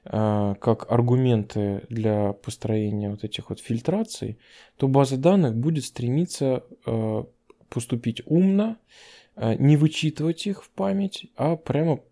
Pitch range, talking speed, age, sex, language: 110-140 Hz, 110 wpm, 20-39, male, Russian